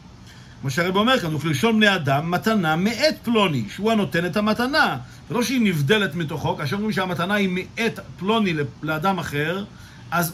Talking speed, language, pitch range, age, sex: 170 wpm, Hebrew, 145-215 Hz, 50-69, male